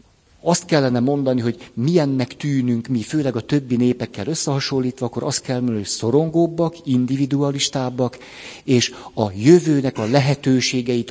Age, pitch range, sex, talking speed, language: 50-69, 115-140 Hz, male, 130 wpm, Hungarian